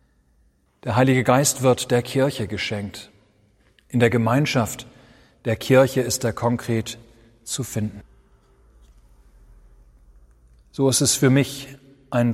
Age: 40-59